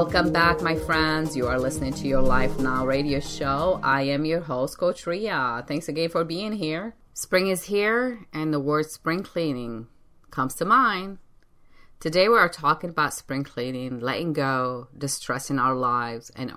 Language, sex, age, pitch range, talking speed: English, female, 30-49, 135-170 Hz, 175 wpm